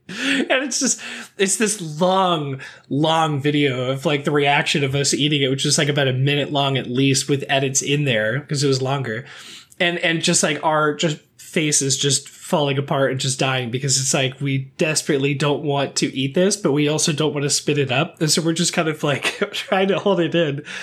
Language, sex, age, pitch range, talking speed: English, male, 20-39, 135-165 Hz, 220 wpm